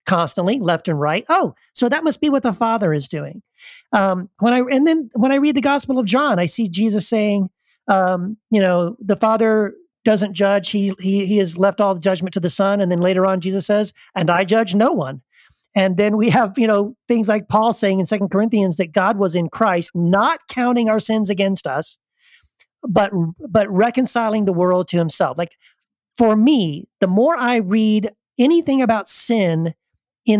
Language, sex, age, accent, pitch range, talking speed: English, male, 40-59, American, 190-235 Hz, 200 wpm